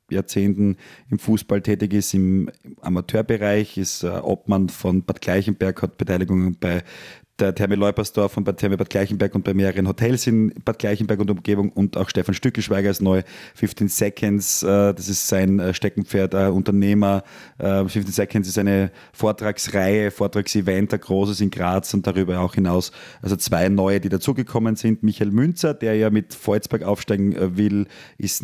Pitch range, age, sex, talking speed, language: 95-105 Hz, 30-49, male, 160 wpm, German